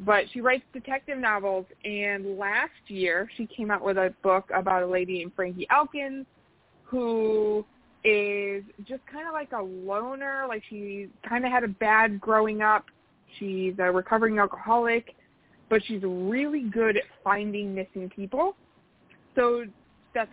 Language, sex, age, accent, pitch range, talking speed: English, female, 20-39, American, 190-230 Hz, 150 wpm